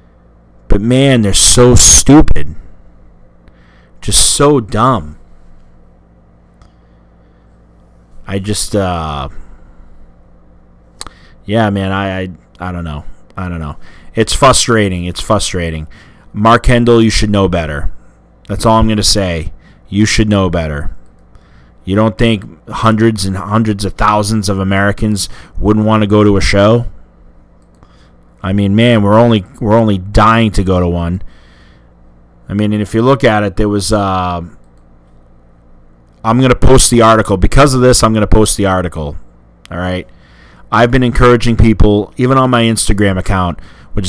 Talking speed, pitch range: 145 wpm, 70-110 Hz